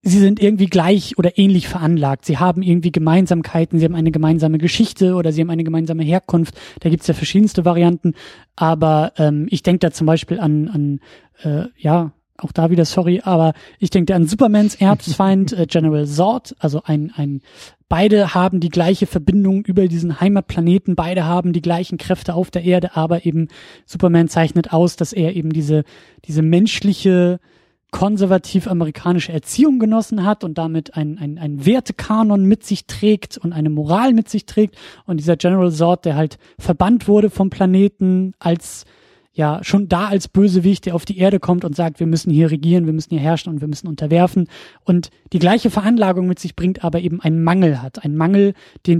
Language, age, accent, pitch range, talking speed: German, 20-39, German, 160-190 Hz, 185 wpm